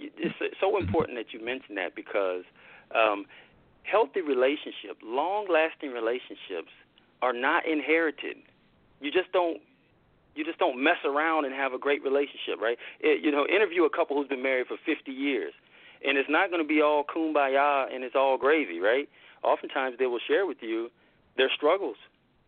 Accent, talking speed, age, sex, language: American, 170 wpm, 40-59, male, English